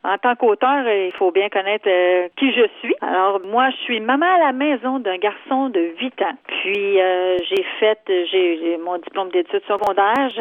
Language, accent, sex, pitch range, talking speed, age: French, Canadian, female, 185-250 Hz, 195 wpm, 40-59